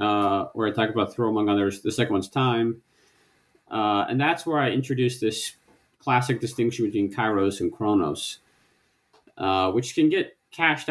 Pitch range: 100-130 Hz